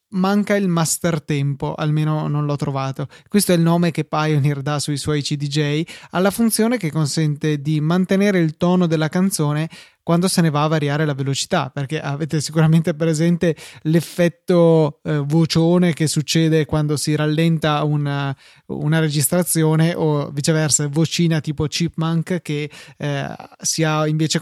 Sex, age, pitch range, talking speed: male, 20-39, 150-165 Hz, 150 wpm